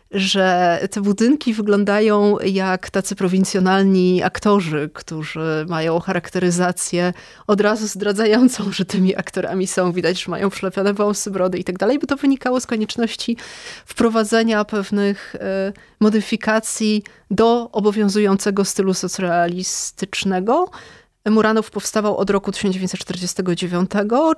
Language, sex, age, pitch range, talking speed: Polish, female, 30-49, 180-215 Hz, 110 wpm